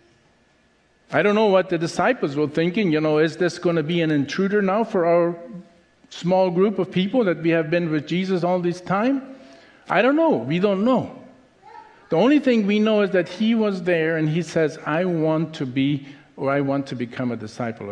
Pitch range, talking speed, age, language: 155-205 Hz, 210 wpm, 50-69, English